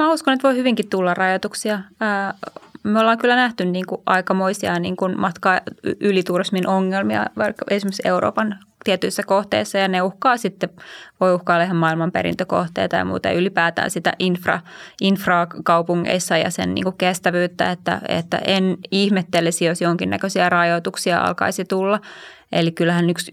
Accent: native